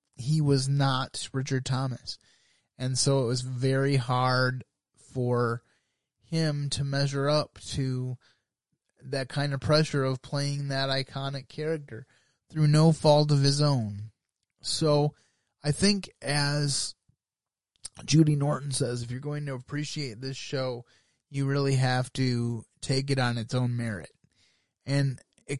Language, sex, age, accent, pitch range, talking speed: English, male, 20-39, American, 120-140 Hz, 135 wpm